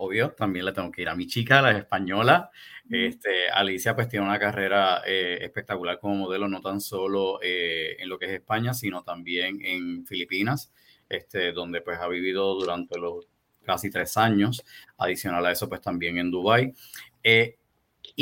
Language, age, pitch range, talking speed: English, 30-49, 95-120 Hz, 170 wpm